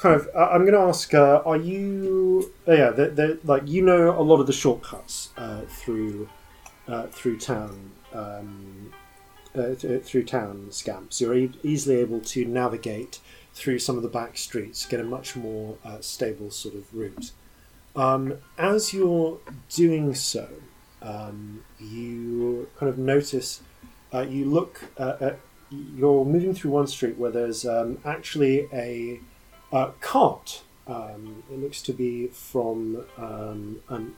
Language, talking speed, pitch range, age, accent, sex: English, 150 wpm, 115-145 Hz, 30-49, British, male